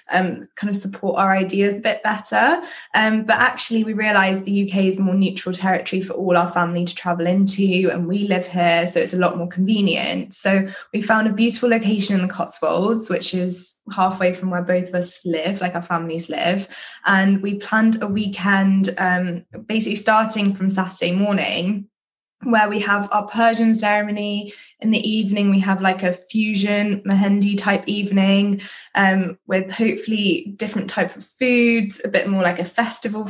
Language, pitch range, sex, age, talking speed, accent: English, 180-205 Hz, female, 10-29, 180 wpm, British